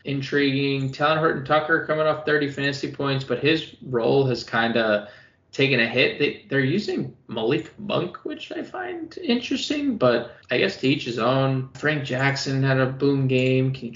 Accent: American